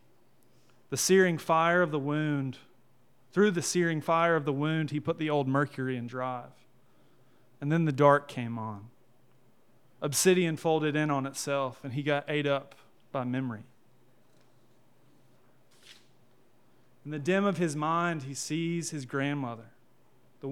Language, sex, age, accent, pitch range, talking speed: English, male, 30-49, American, 125-155 Hz, 145 wpm